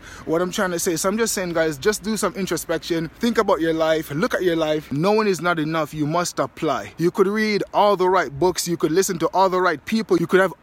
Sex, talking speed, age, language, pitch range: male, 265 wpm, 20-39, English, 170-215 Hz